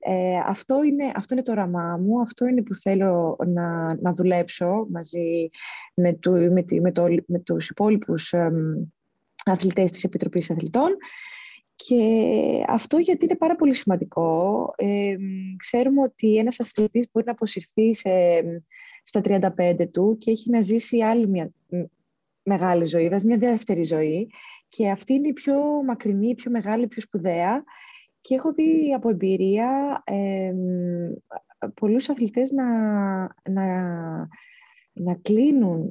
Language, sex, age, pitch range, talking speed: Greek, female, 20-39, 180-250 Hz, 135 wpm